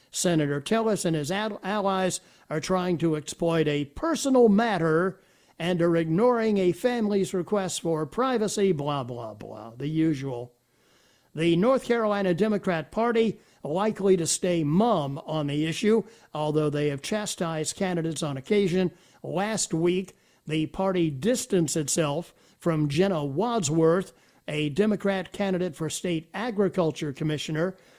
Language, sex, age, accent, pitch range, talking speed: English, male, 60-79, American, 155-200 Hz, 130 wpm